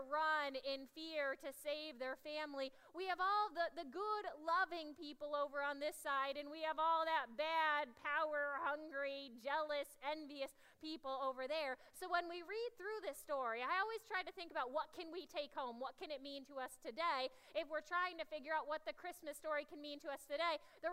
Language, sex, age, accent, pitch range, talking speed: English, female, 30-49, American, 285-340 Hz, 210 wpm